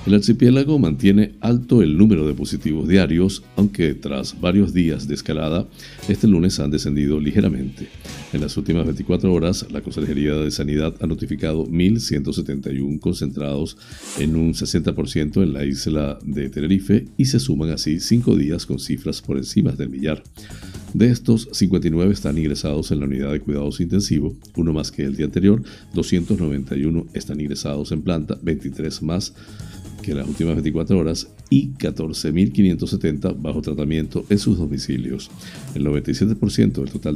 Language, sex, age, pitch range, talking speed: Spanish, male, 60-79, 75-100 Hz, 150 wpm